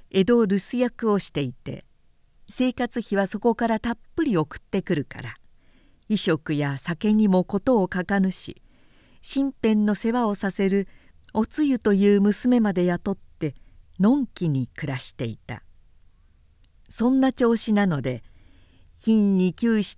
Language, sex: Japanese, female